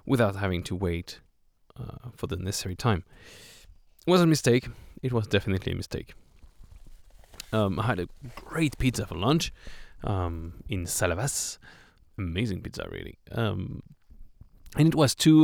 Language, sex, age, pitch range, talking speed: English, male, 20-39, 95-125 Hz, 145 wpm